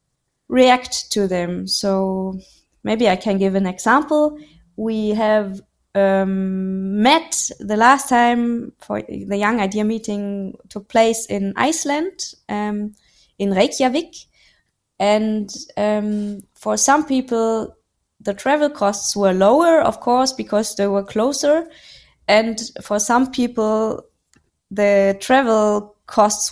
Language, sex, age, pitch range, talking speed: English, female, 20-39, 200-250 Hz, 120 wpm